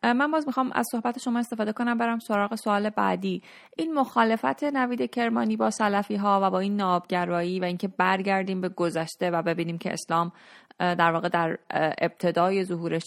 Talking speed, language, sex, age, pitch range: 170 wpm, Persian, female, 30-49, 175-210 Hz